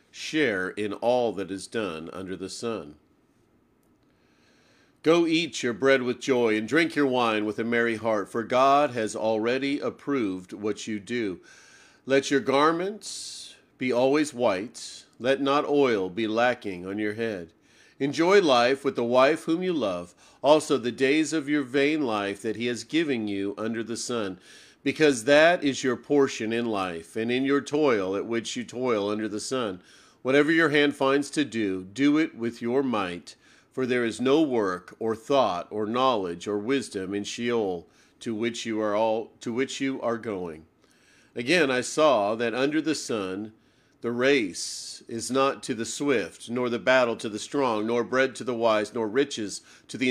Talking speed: 180 wpm